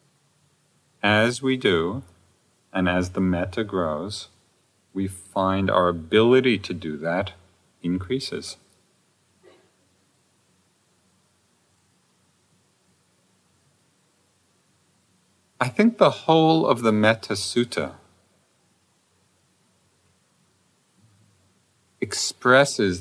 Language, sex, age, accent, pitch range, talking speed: English, male, 50-69, American, 90-115 Hz, 65 wpm